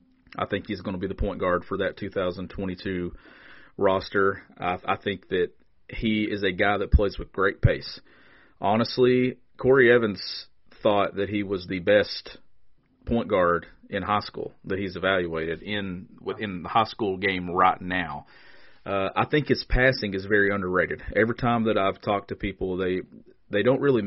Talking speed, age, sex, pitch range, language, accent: 175 wpm, 40-59, male, 95-115 Hz, English, American